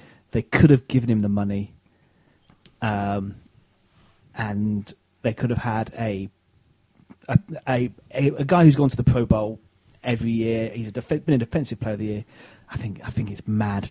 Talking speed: 180 wpm